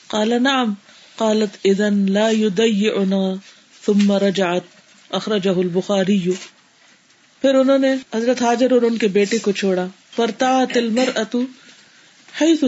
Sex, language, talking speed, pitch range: female, Urdu, 110 wpm, 200-250 Hz